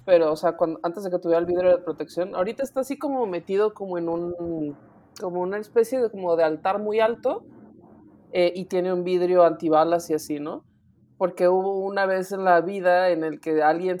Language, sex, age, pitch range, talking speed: Spanish, male, 20-39, 170-225 Hz, 210 wpm